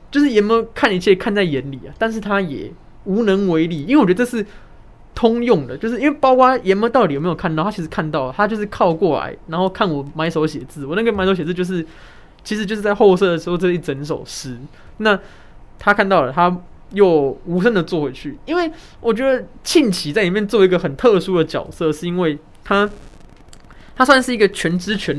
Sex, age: male, 20-39